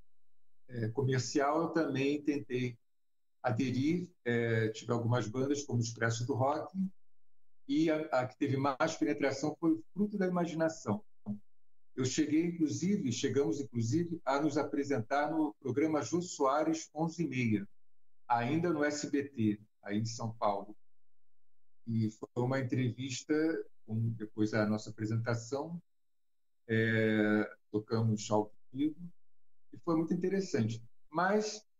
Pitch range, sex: 110-160 Hz, male